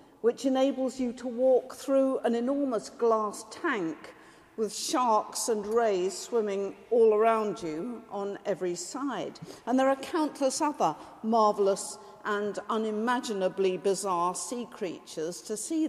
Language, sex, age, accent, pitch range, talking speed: English, female, 50-69, British, 205-290 Hz, 130 wpm